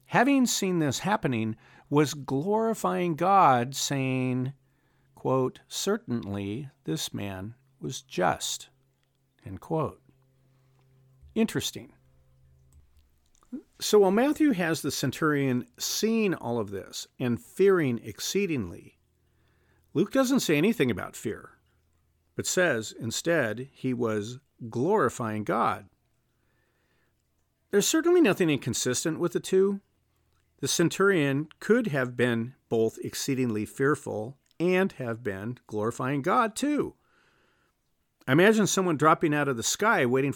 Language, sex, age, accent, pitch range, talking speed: English, male, 50-69, American, 120-175 Hz, 105 wpm